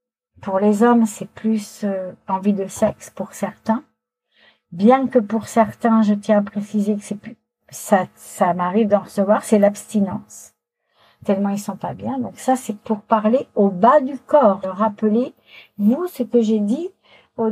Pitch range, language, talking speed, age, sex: 210-265 Hz, French, 170 wpm, 60-79, female